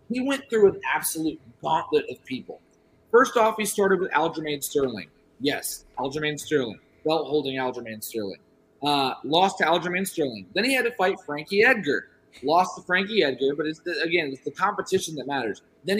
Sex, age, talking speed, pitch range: male, 30-49, 180 wpm, 145-205 Hz